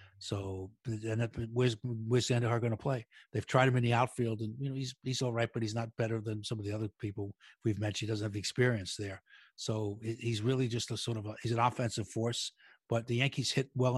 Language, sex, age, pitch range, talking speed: English, male, 60-79, 105-125 Hz, 250 wpm